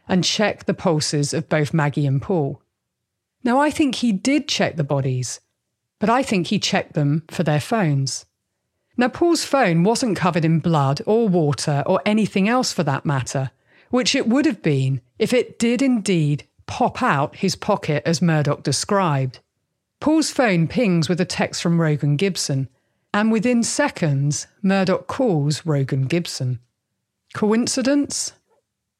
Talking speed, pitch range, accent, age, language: 155 wpm, 150-225 Hz, British, 40-59, English